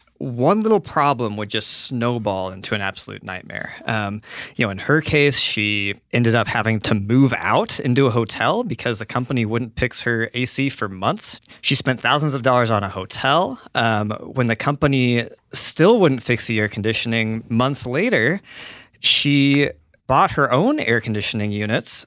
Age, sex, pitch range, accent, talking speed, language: 30-49, male, 115-155 Hz, American, 170 wpm, English